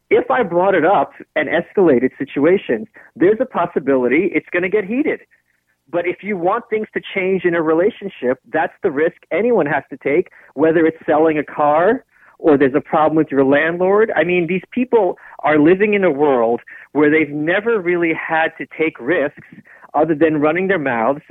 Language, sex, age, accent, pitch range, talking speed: English, male, 40-59, American, 155-205 Hz, 190 wpm